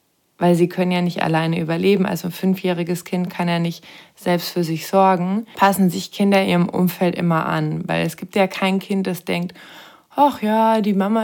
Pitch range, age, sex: 175-200 Hz, 20-39, female